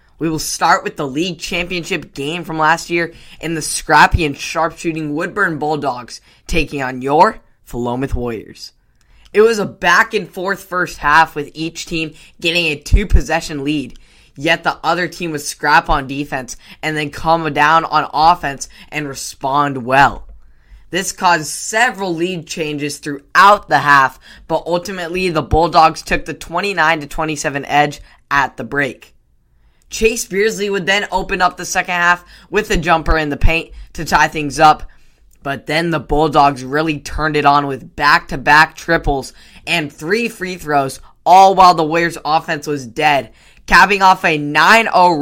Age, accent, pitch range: 10-29, American, 145-180 Hz